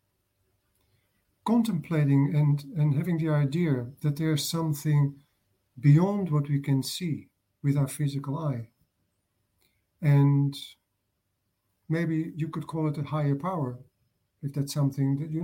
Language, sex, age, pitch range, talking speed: English, male, 50-69, 130-155 Hz, 125 wpm